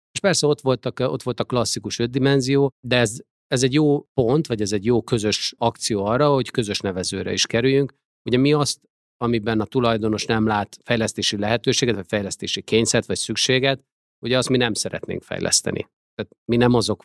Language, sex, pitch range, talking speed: Hungarian, male, 100-125 Hz, 185 wpm